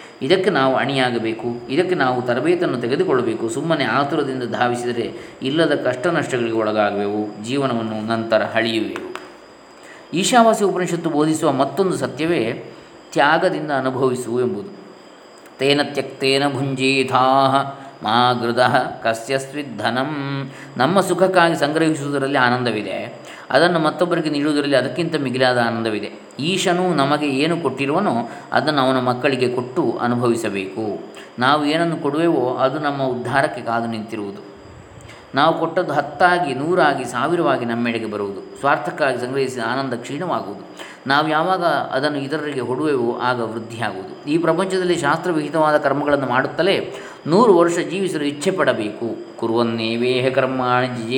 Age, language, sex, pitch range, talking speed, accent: 20-39, Kannada, male, 120-155 Hz, 100 wpm, native